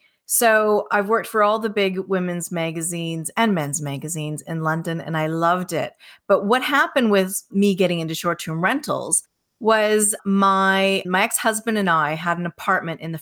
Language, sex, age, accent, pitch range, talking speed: English, female, 30-49, American, 170-215 Hz, 175 wpm